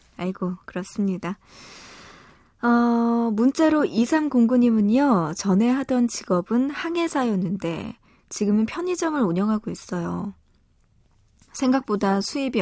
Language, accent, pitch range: Korean, native, 180-245 Hz